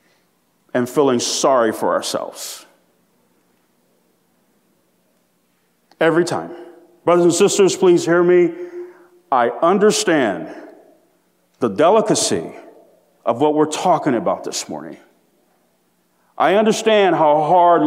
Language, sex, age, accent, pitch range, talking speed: English, male, 40-59, American, 175-285 Hz, 95 wpm